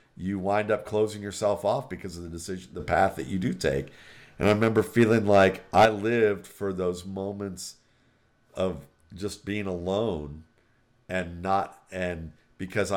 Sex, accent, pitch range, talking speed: male, American, 85-105 Hz, 155 wpm